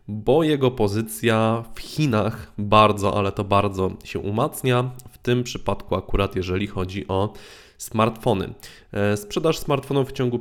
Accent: native